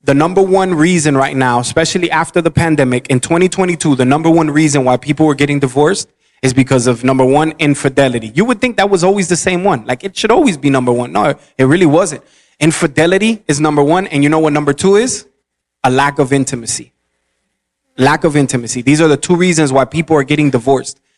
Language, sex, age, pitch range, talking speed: English, male, 20-39, 130-160 Hz, 215 wpm